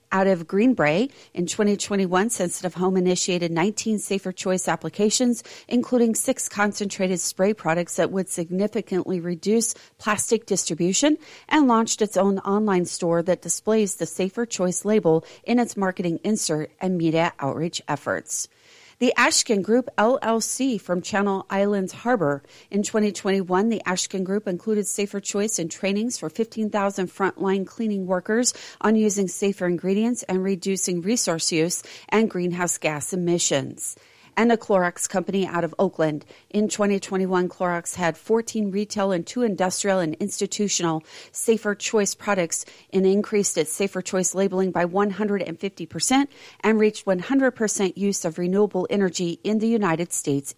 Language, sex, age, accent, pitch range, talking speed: English, female, 40-59, American, 175-215 Hz, 140 wpm